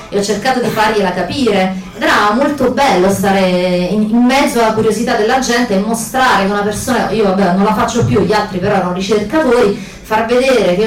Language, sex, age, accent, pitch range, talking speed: Italian, female, 30-49, native, 195-245 Hz, 200 wpm